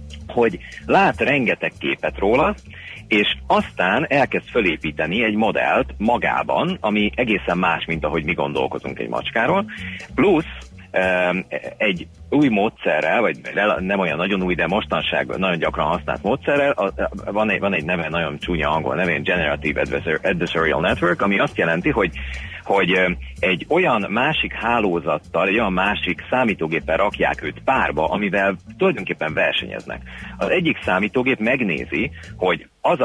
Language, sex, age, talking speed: Hungarian, male, 40-59, 135 wpm